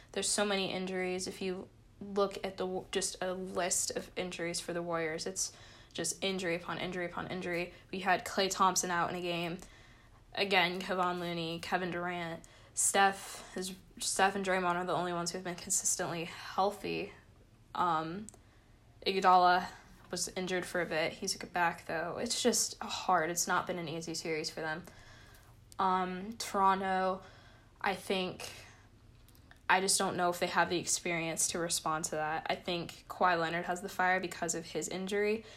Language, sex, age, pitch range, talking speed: English, female, 10-29, 155-190 Hz, 170 wpm